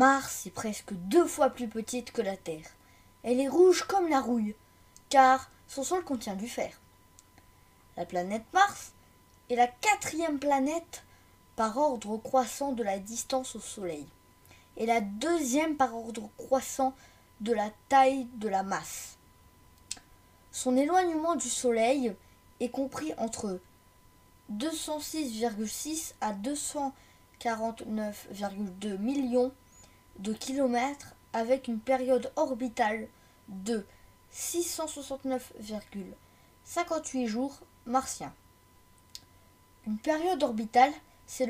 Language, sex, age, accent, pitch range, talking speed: French, female, 20-39, French, 200-275 Hz, 105 wpm